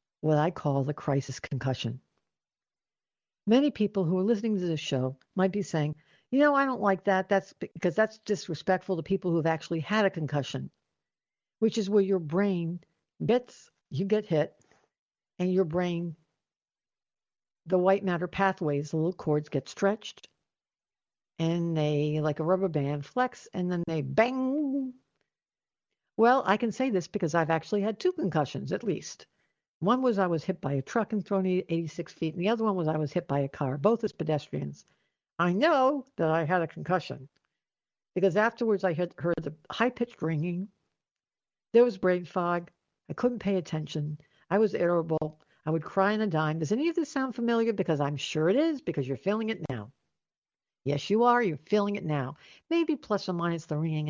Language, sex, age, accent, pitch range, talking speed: English, female, 60-79, American, 155-210 Hz, 185 wpm